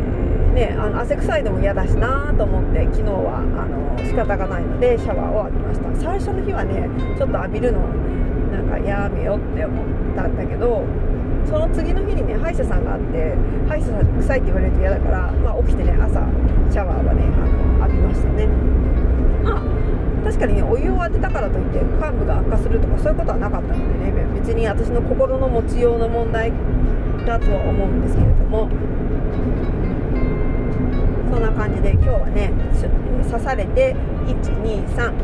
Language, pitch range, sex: Japanese, 70-95 Hz, female